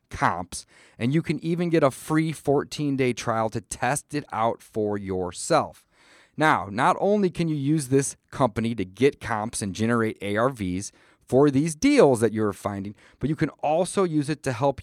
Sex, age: male, 30-49